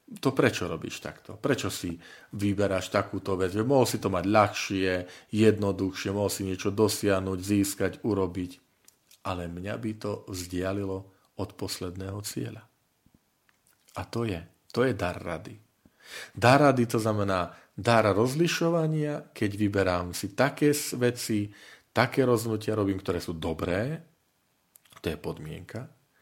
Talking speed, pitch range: 130 wpm, 95-130 Hz